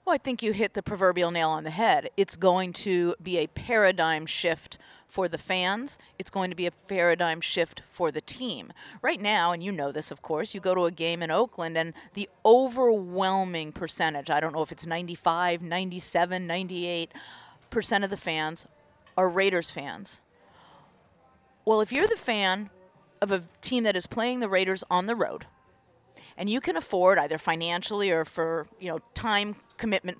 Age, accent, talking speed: 40-59, American, 185 wpm